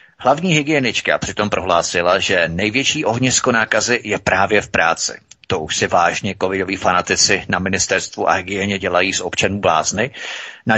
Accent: native